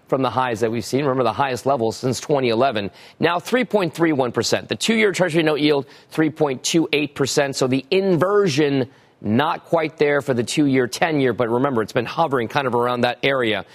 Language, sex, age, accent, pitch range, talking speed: English, male, 40-59, American, 125-165 Hz, 185 wpm